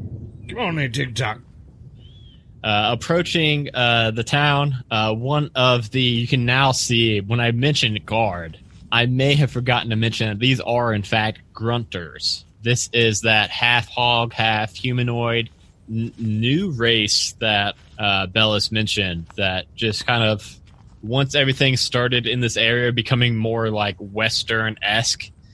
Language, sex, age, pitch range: English, male, 20-39, 100-120 Hz